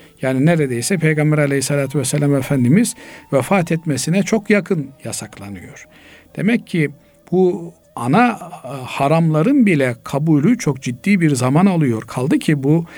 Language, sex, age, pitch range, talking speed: Turkish, male, 50-69, 130-180 Hz, 120 wpm